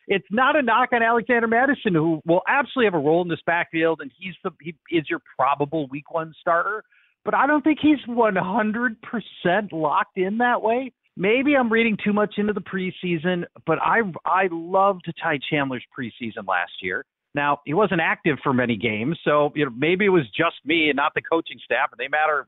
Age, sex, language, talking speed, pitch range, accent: 50-69, male, English, 200 wpm, 140-215 Hz, American